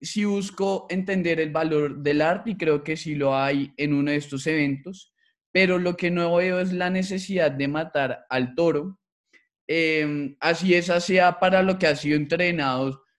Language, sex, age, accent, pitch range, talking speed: Spanish, male, 20-39, Colombian, 150-185 Hz, 185 wpm